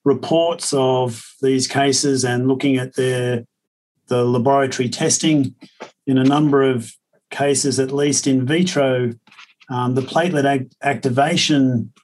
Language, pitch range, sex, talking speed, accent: English, 125-145 Hz, male, 125 wpm, Australian